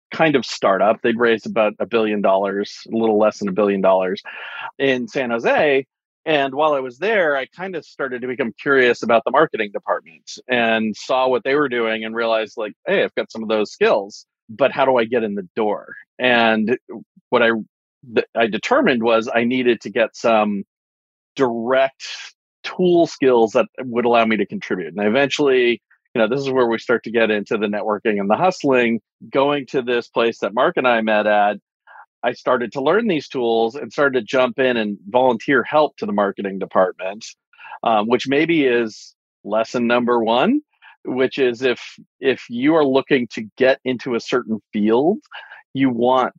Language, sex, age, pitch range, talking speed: English, male, 40-59, 110-130 Hz, 190 wpm